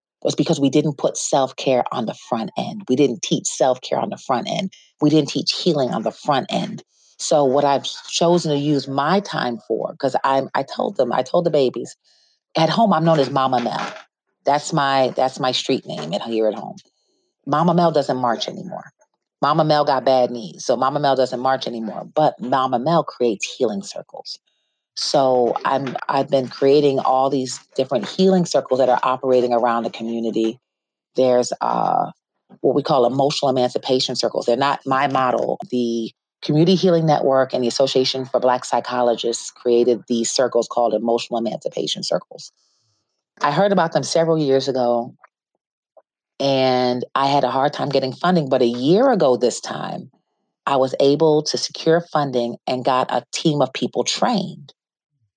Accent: American